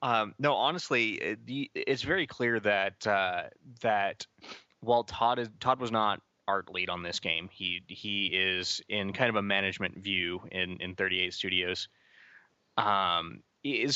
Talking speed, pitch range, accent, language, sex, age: 150 wpm, 95-120 Hz, American, English, male, 20-39